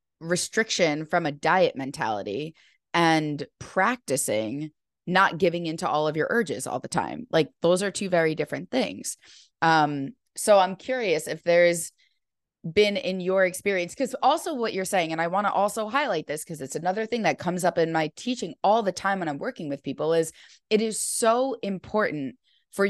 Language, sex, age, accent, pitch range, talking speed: English, female, 20-39, American, 160-200 Hz, 185 wpm